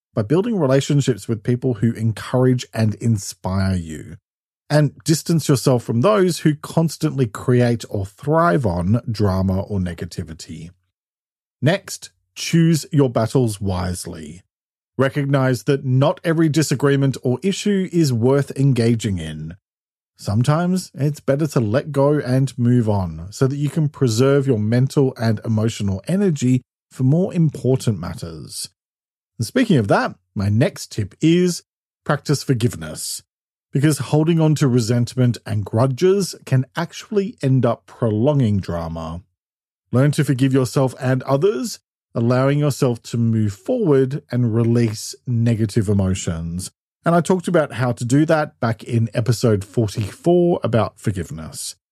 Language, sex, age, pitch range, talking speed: English, male, 40-59, 110-145 Hz, 135 wpm